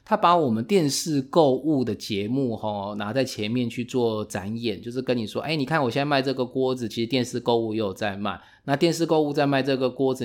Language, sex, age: Chinese, male, 20-39